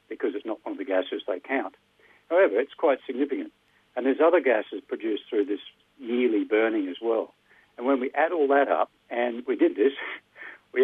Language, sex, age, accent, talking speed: English, male, 60-79, Australian, 200 wpm